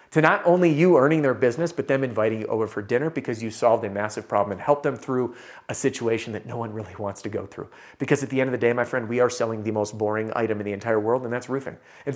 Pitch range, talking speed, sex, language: 110-145 Hz, 285 wpm, male, English